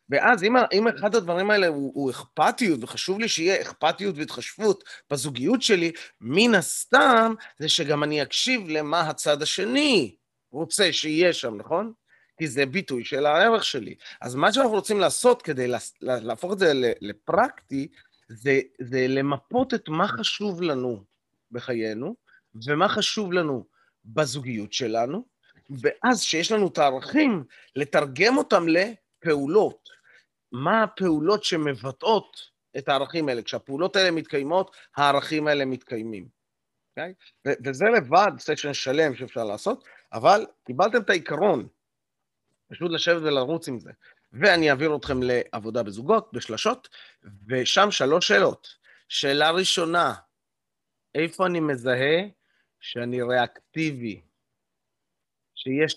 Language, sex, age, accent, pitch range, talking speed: Hebrew, male, 30-49, native, 135-195 Hz, 120 wpm